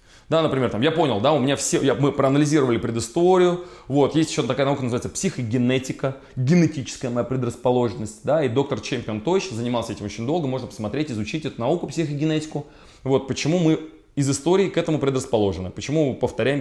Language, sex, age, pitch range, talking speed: Russian, male, 20-39, 125-165 Hz, 165 wpm